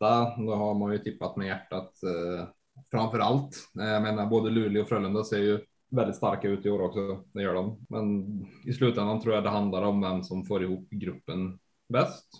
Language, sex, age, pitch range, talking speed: Swedish, male, 20-39, 100-120 Hz, 195 wpm